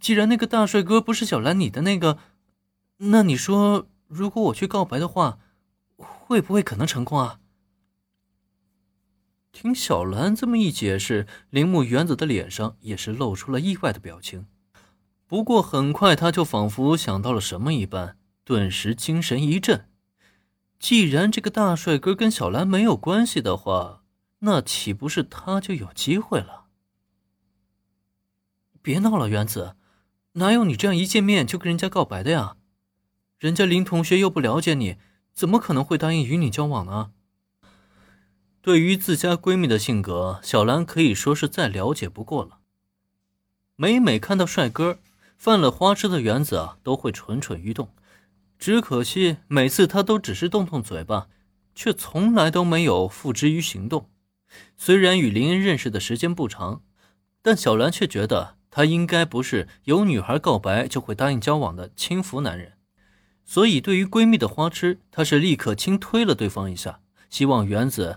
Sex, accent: male, native